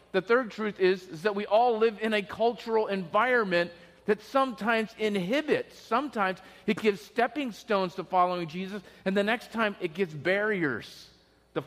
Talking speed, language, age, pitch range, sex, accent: 165 wpm, English, 40-59, 180-225 Hz, male, American